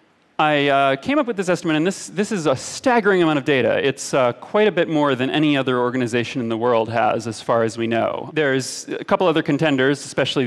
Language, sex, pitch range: Japanese, male, 135-175 Hz